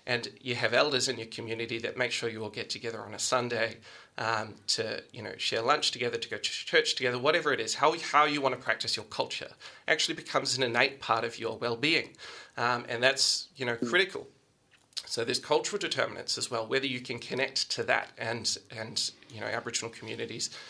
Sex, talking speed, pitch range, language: male, 210 wpm, 120-135 Hz, English